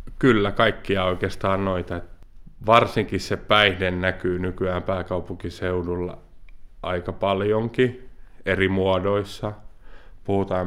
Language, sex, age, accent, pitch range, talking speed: Finnish, male, 30-49, native, 90-100 Hz, 85 wpm